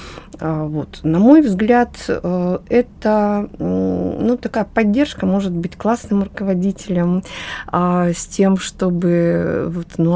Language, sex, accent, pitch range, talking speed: Russian, female, native, 175-215 Hz, 90 wpm